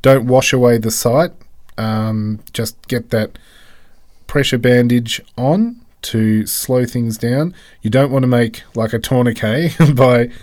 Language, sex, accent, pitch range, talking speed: English, male, Australian, 110-130 Hz, 145 wpm